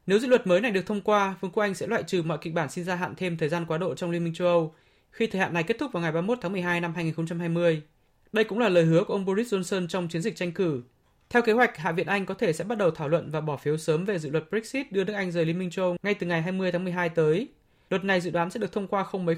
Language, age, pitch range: Vietnamese, 20-39, 155-195 Hz